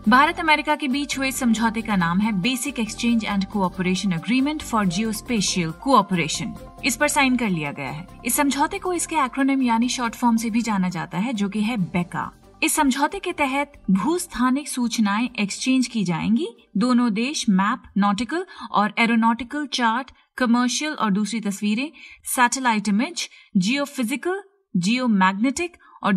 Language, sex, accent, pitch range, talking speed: Hindi, female, native, 210-275 Hz, 155 wpm